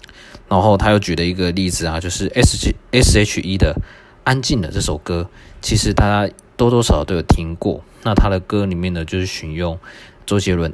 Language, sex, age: Chinese, male, 20-39